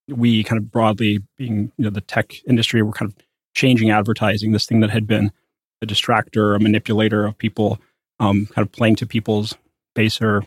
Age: 30-49